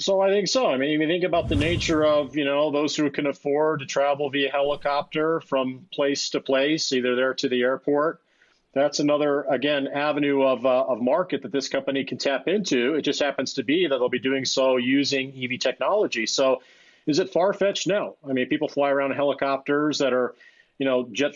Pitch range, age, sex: 130-160 Hz, 40-59, male